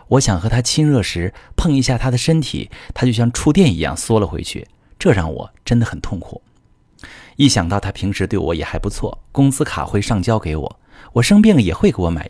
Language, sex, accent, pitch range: Chinese, male, native, 90-125 Hz